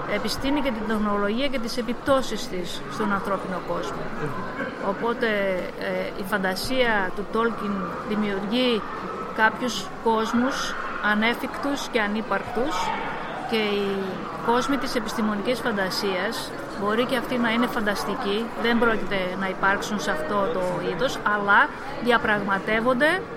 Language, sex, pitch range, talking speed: Greek, female, 205-245 Hz, 115 wpm